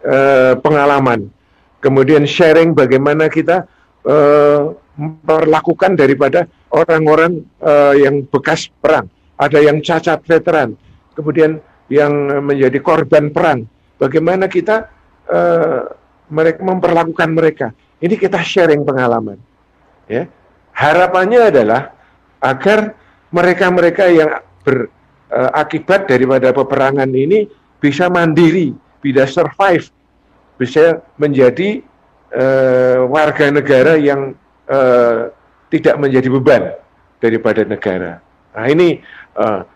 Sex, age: male, 50-69